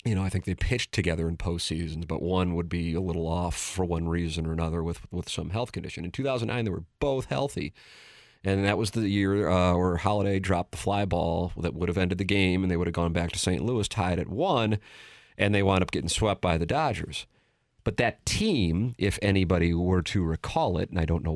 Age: 40-59